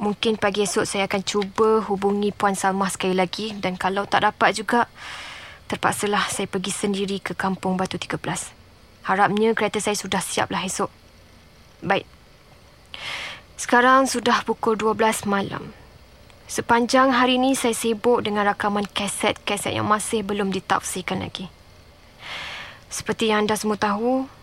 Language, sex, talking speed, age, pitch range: Malay, female, 135 wpm, 20-39, 205-240 Hz